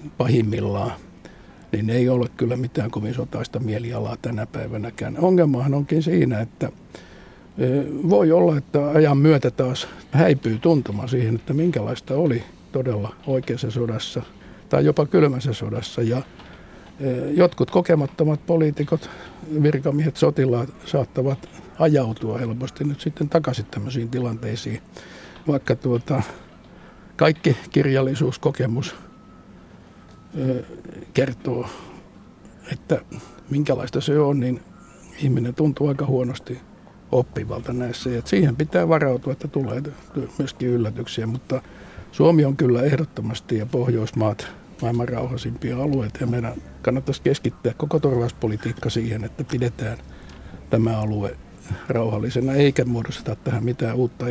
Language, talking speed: Finnish, 105 wpm